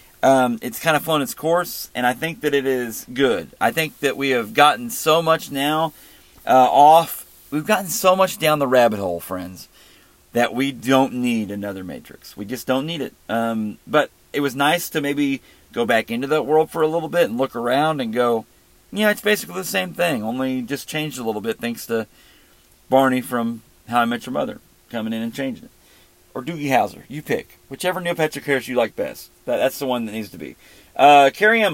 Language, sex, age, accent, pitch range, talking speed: English, male, 40-59, American, 120-155 Hz, 215 wpm